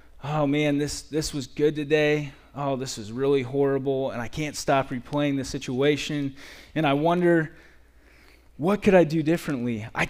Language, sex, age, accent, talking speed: English, male, 20-39, American, 165 wpm